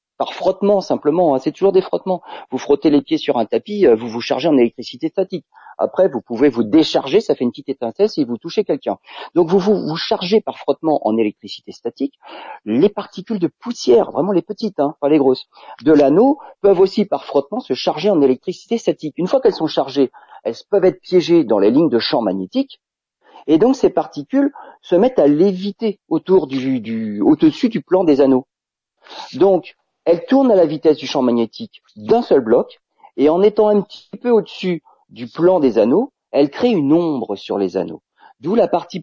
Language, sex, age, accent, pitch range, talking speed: French, male, 40-59, French, 135-205 Hz, 200 wpm